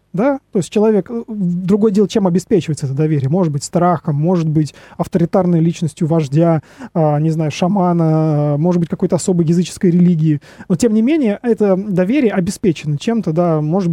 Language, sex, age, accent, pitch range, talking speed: Russian, male, 20-39, native, 165-210 Hz, 160 wpm